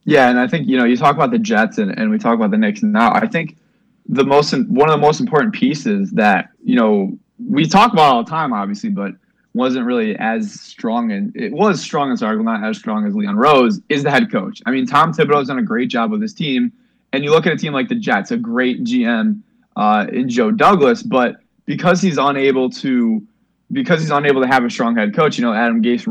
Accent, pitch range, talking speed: American, 145-235 Hz, 245 wpm